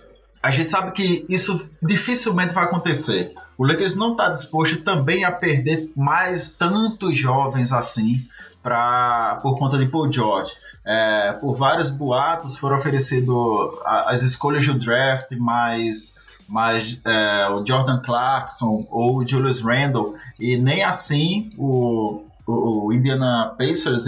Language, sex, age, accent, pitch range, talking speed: Portuguese, male, 20-39, Brazilian, 120-155 Hz, 135 wpm